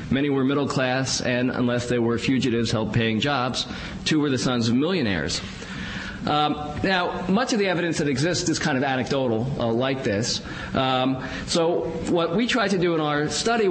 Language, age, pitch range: English, 40-59, 120-155 Hz